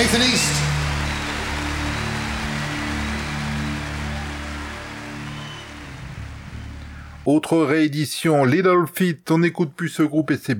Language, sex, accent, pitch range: French, male, French, 105-150 Hz